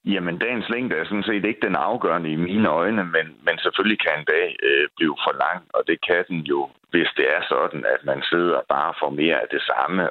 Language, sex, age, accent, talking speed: Danish, male, 60-79, native, 235 wpm